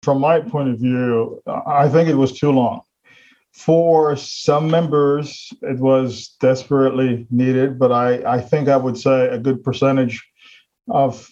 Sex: male